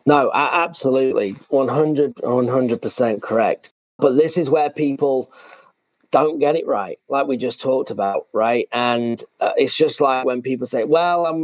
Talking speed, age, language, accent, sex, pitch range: 155 wpm, 40-59, English, British, male, 130-165 Hz